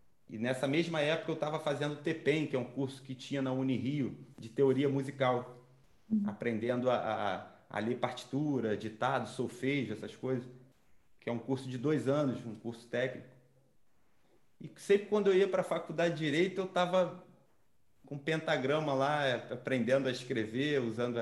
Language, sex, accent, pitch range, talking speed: Portuguese, male, Brazilian, 120-155 Hz, 165 wpm